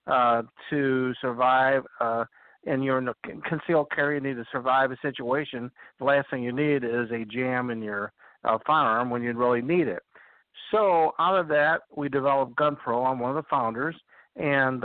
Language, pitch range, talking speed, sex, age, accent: English, 130-155 Hz, 185 wpm, male, 60-79, American